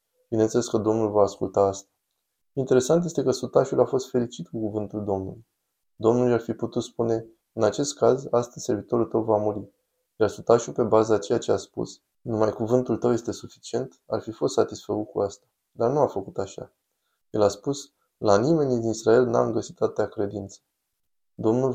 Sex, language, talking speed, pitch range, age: male, Romanian, 180 wpm, 105-125 Hz, 20-39